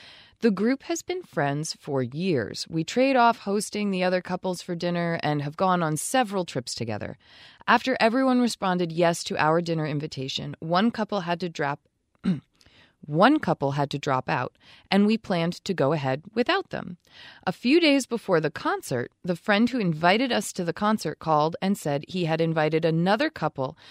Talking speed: 180 wpm